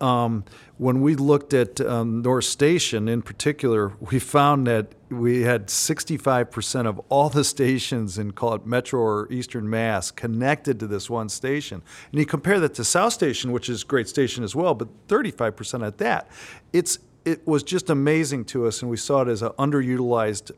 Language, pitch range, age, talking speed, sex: English, 115-140 Hz, 40-59, 185 wpm, male